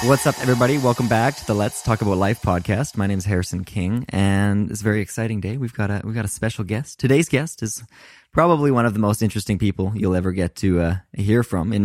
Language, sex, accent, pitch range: English, male, American, 100-120 Hz